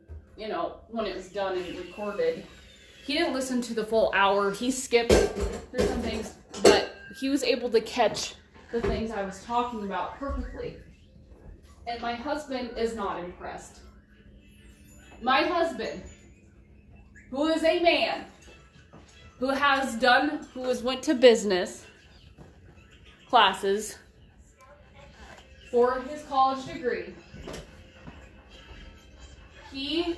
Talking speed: 115 wpm